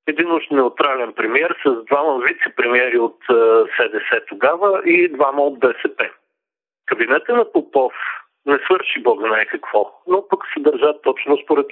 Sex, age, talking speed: male, 50-69, 135 wpm